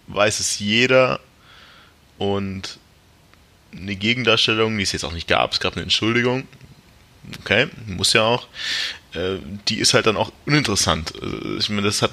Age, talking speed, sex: 20-39, 150 wpm, male